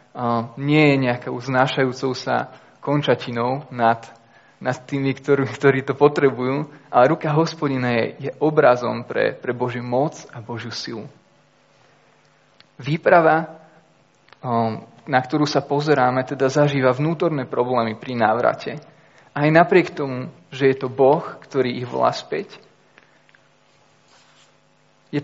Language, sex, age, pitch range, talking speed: Slovak, male, 20-39, 125-150 Hz, 115 wpm